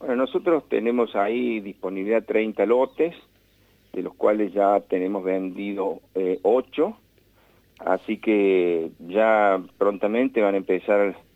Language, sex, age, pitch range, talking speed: Spanish, male, 50-69, 90-110 Hz, 115 wpm